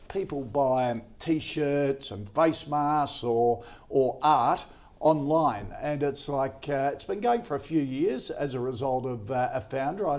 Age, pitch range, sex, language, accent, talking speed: 50-69, 135-165 Hz, male, English, Australian, 175 wpm